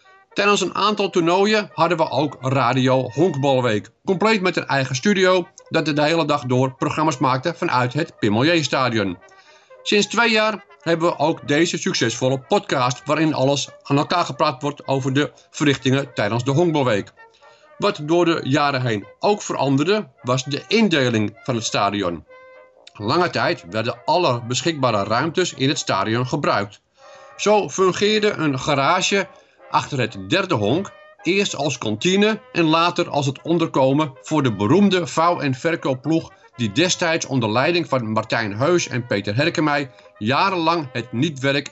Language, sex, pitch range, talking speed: Dutch, male, 130-180 Hz, 150 wpm